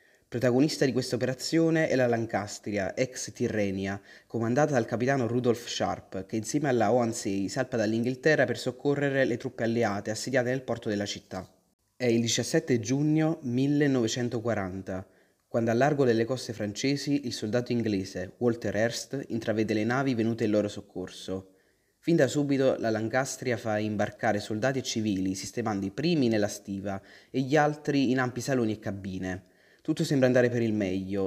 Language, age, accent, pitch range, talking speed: Italian, 20-39, native, 105-130 Hz, 155 wpm